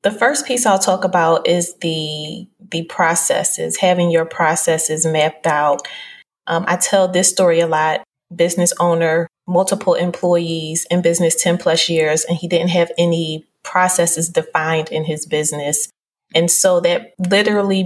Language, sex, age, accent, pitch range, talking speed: English, female, 20-39, American, 170-195 Hz, 150 wpm